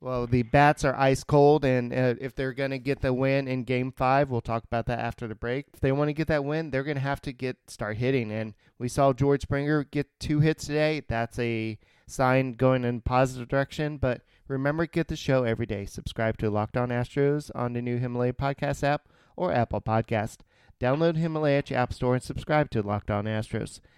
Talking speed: 225 wpm